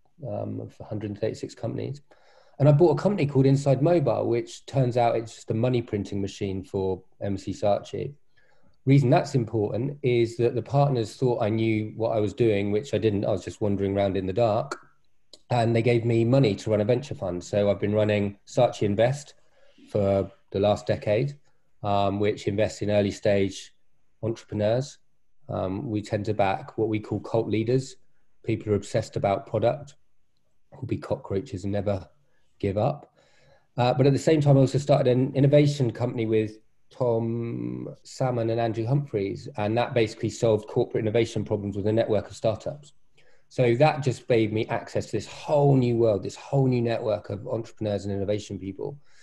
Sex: male